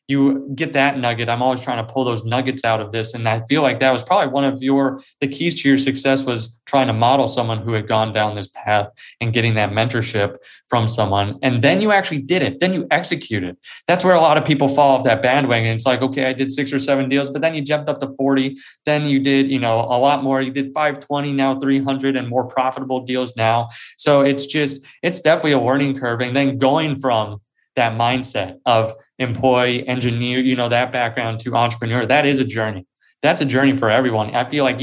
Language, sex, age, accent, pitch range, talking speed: English, male, 20-39, American, 115-140 Hz, 235 wpm